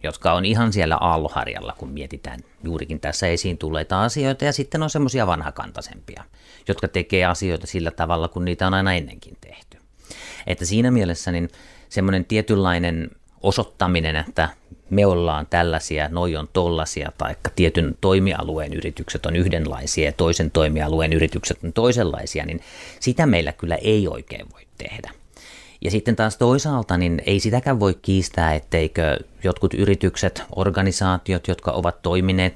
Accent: Finnish